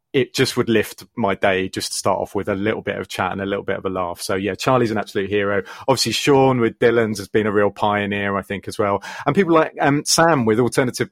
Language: English